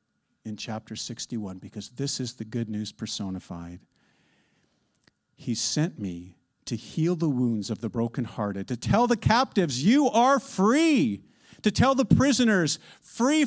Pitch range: 105-155 Hz